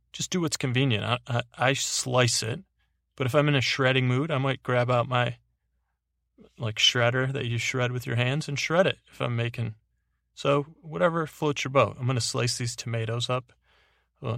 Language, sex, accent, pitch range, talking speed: English, male, American, 110-130 Hz, 200 wpm